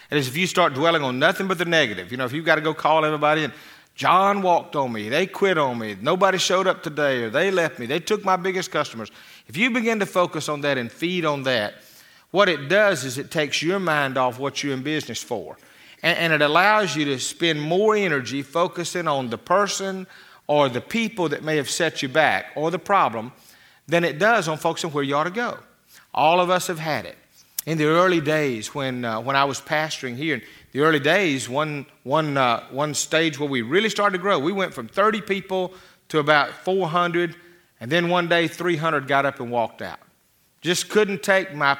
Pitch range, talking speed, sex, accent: 145-185 Hz, 225 wpm, male, American